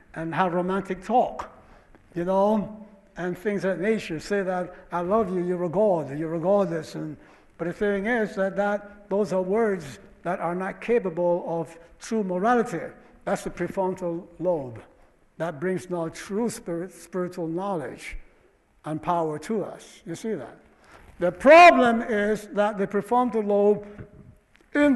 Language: English